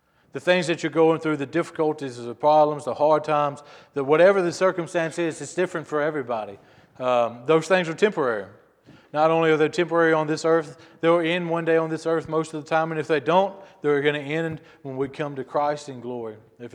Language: English